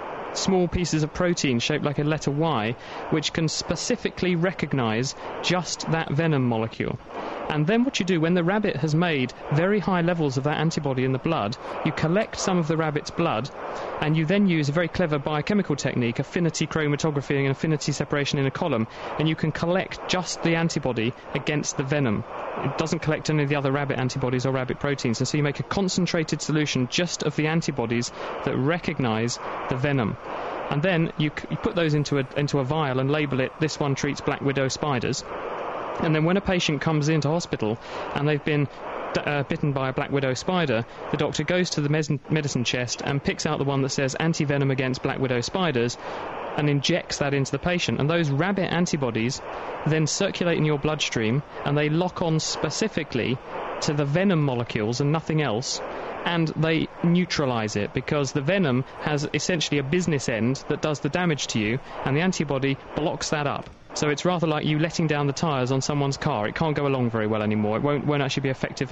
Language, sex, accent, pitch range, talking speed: English, male, British, 135-165 Hz, 200 wpm